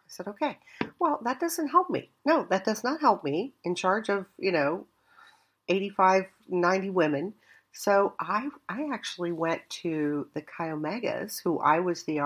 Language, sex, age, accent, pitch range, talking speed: English, female, 50-69, American, 150-220 Hz, 170 wpm